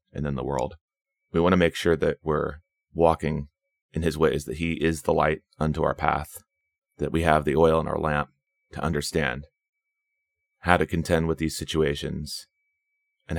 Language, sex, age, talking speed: English, male, 30-49, 180 wpm